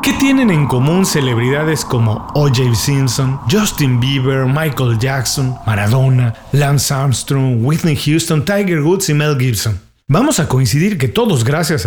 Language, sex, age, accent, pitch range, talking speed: Spanish, male, 40-59, Mexican, 125-185 Hz, 140 wpm